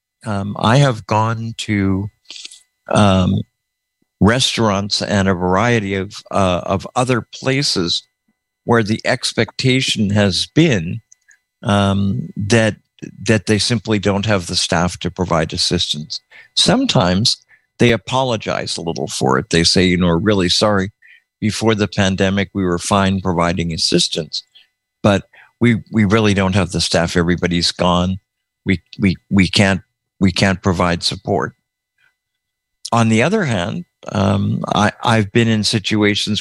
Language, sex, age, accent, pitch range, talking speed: English, male, 50-69, American, 95-115 Hz, 135 wpm